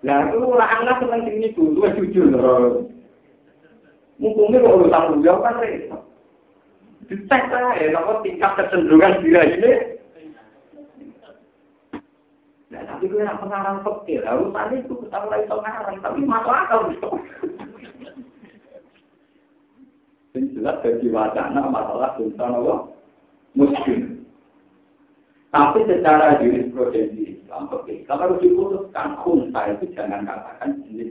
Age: 50-69